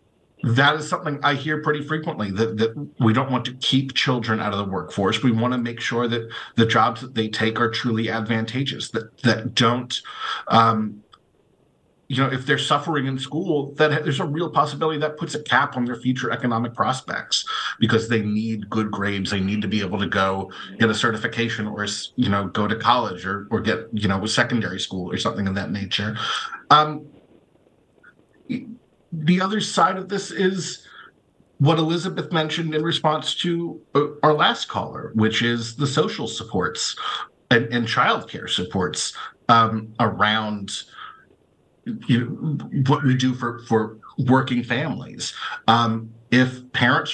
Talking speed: 165 wpm